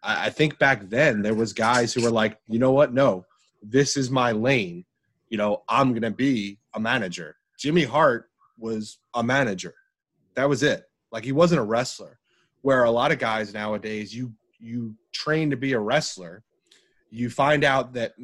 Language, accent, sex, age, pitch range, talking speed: English, American, male, 30-49, 110-135 Hz, 185 wpm